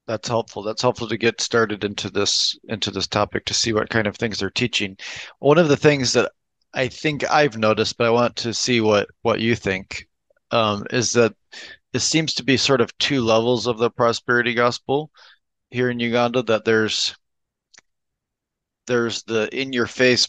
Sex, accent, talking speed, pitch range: male, American, 180 wpm, 105-120 Hz